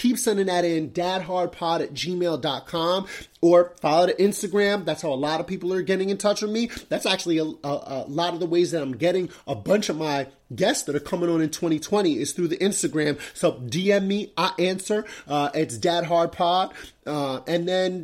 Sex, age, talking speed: male, 30-49, 205 wpm